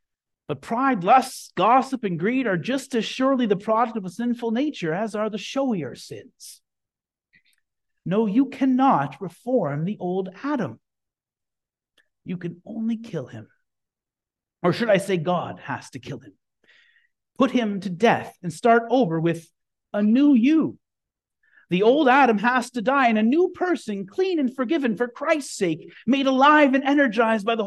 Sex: male